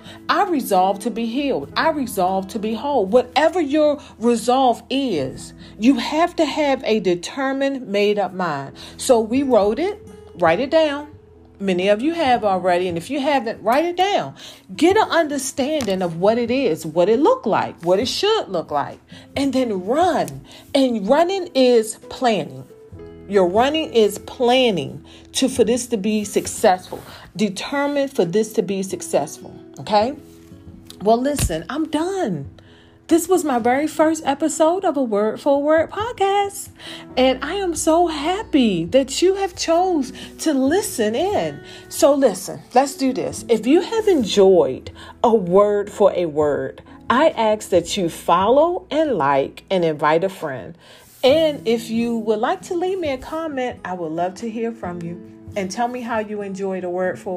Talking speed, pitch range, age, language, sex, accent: 165 wpm, 195-305 Hz, 40-59, English, female, American